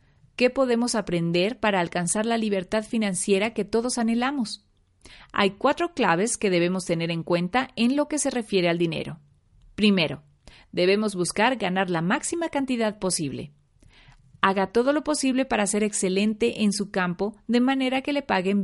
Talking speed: 160 wpm